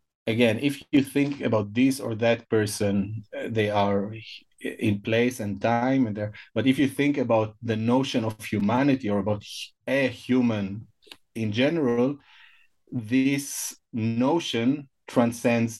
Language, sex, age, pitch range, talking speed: English, male, 30-49, 105-125 Hz, 135 wpm